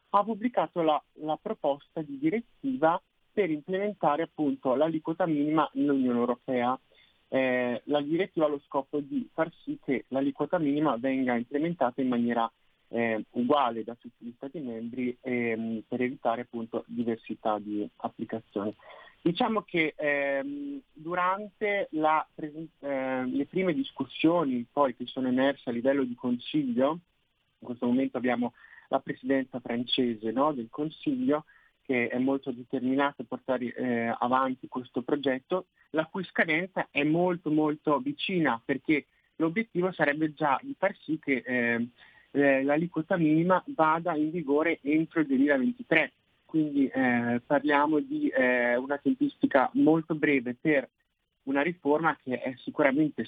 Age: 30-49